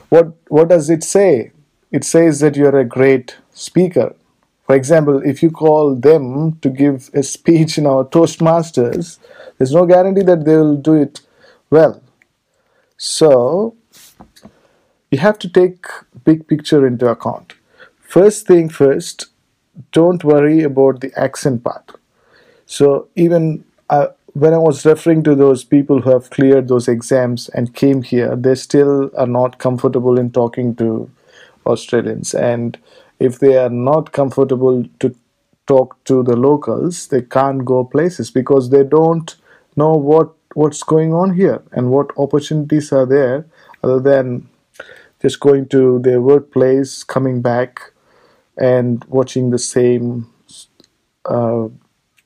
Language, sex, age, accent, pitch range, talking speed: English, male, 50-69, Indian, 130-160 Hz, 140 wpm